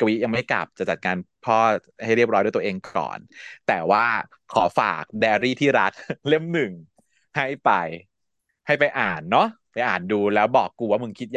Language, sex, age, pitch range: Thai, male, 20-39, 115-165 Hz